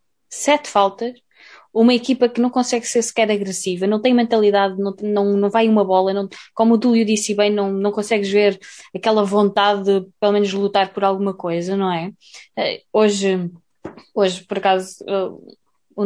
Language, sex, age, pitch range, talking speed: Portuguese, female, 20-39, 195-230 Hz, 170 wpm